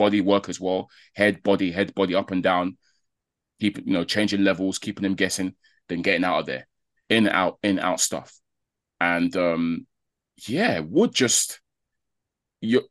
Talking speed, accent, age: 165 wpm, British, 20-39